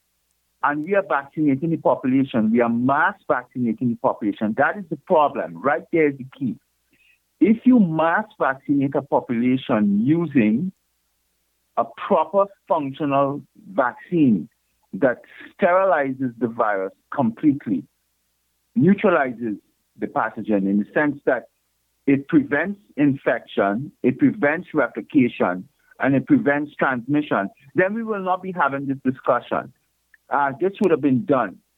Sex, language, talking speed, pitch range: male, English, 130 wpm, 110-180 Hz